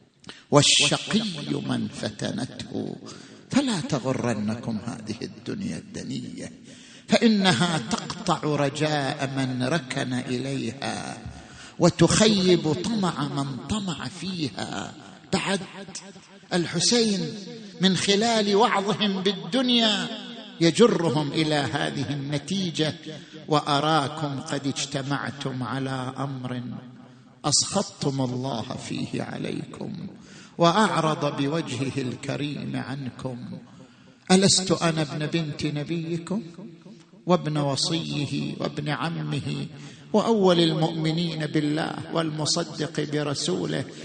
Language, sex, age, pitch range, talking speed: Arabic, male, 50-69, 140-195 Hz, 75 wpm